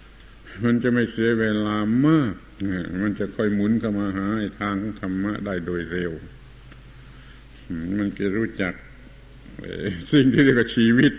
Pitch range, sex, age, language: 105-120 Hz, male, 70-89, Thai